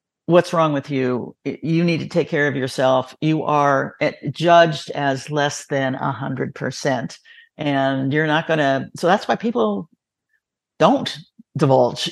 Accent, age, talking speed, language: American, 50-69, 155 wpm, English